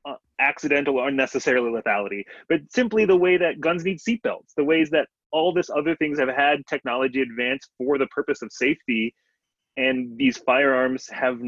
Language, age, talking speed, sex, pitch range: English, 20-39, 175 wpm, male, 115-170 Hz